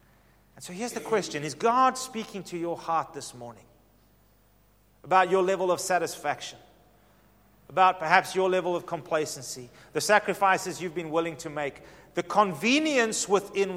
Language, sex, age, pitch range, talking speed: English, male, 40-59, 115-165 Hz, 150 wpm